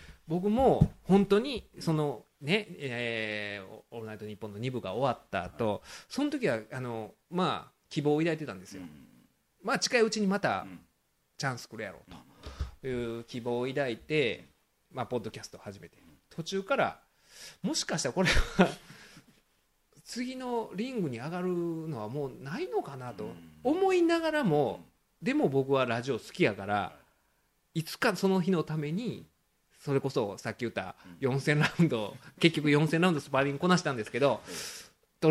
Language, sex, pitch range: Japanese, male, 120-180 Hz